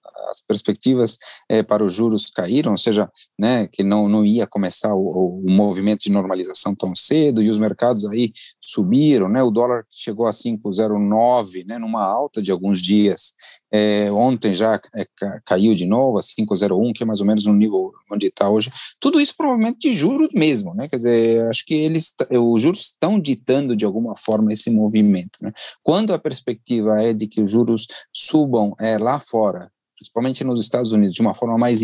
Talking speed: 190 wpm